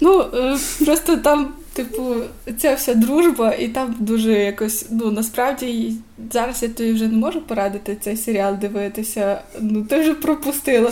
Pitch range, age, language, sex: 215-245 Hz, 20-39, Ukrainian, female